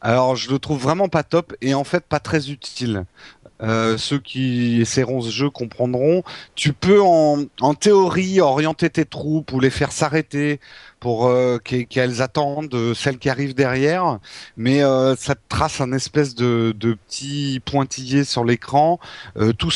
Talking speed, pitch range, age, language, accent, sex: 175 wpm, 120-155 Hz, 40-59, French, French, male